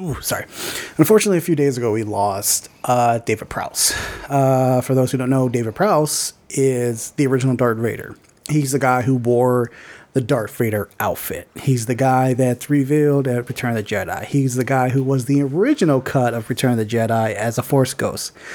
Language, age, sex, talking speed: English, 30-49, male, 195 wpm